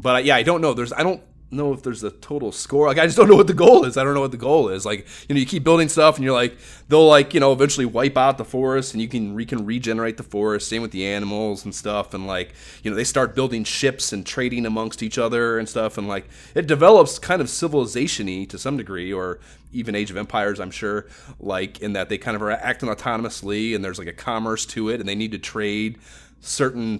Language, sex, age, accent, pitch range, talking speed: English, male, 30-49, American, 100-125 Hz, 260 wpm